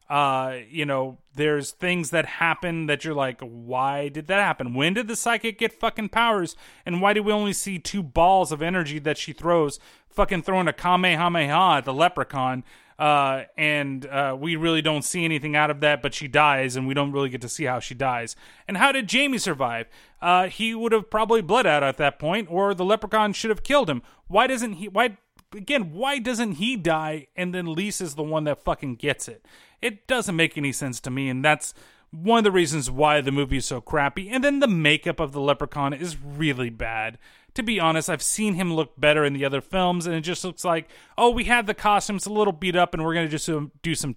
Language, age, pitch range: English, 30-49, 145-205 Hz